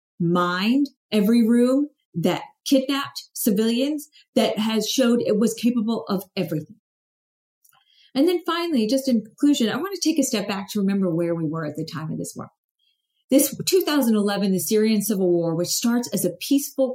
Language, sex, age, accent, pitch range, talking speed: English, female, 40-59, American, 180-255 Hz, 175 wpm